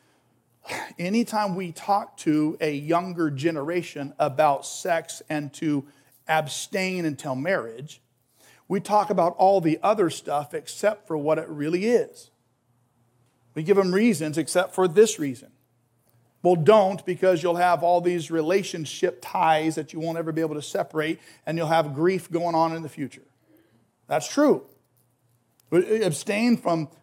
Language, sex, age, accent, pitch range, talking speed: English, male, 40-59, American, 150-190 Hz, 145 wpm